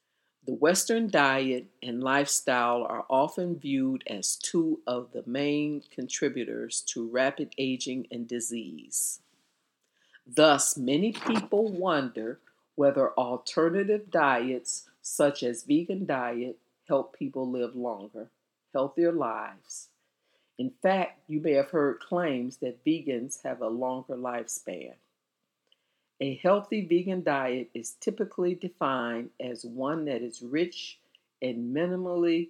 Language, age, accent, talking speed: English, 50-69, American, 115 wpm